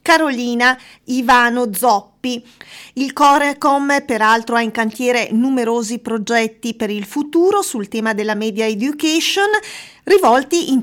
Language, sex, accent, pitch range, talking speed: Italian, female, native, 230-295 Hz, 115 wpm